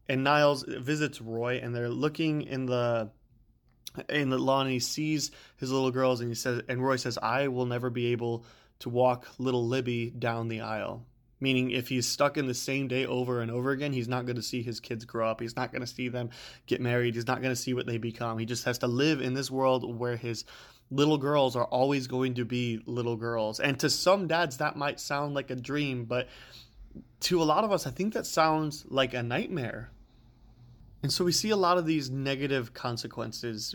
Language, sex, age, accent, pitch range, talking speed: English, male, 20-39, American, 120-135 Hz, 215 wpm